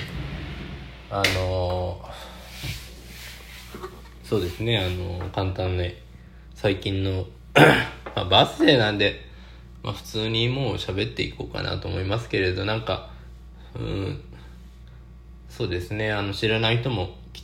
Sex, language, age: male, Japanese, 20-39